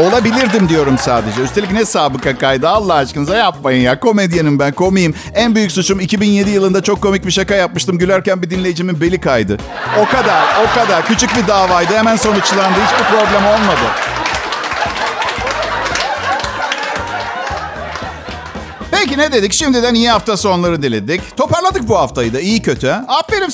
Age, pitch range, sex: 50-69, 155-225 Hz, male